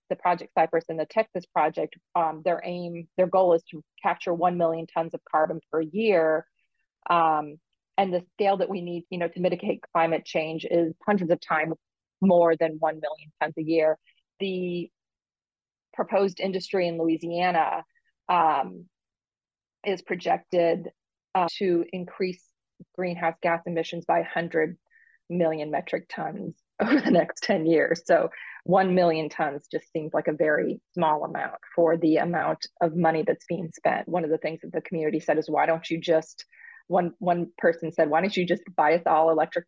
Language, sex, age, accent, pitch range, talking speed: English, female, 30-49, American, 160-180 Hz, 170 wpm